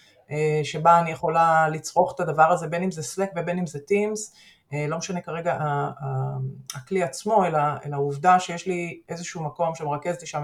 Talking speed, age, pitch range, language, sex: 180 wpm, 30-49, 150-185 Hz, Hebrew, female